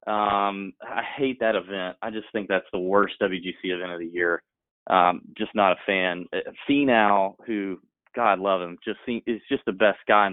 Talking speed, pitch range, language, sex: 200 wpm, 100-130 Hz, English, male